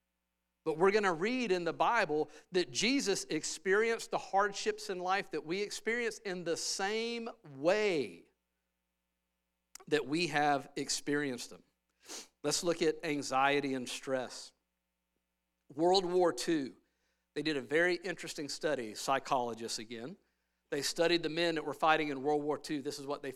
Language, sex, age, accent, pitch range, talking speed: English, male, 50-69, American, 120-165 Hz, 150 wpm